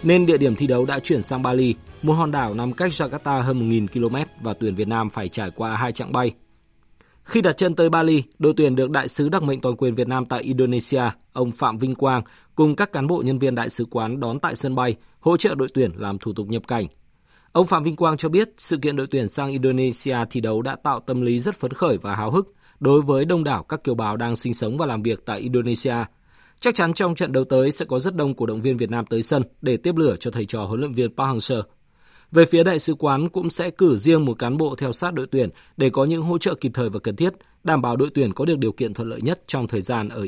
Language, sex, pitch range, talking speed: Vietnamese, male, 115-155 Hz, 270 wpm